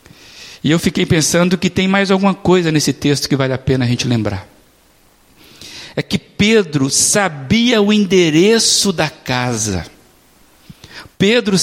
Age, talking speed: 60-79, 140 wpm